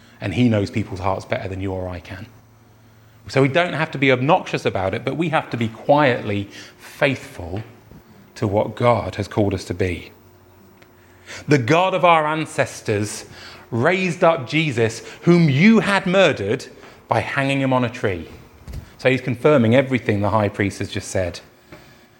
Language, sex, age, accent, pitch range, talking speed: English, male, 30-49, British, 110-155 Hz, 170 wpm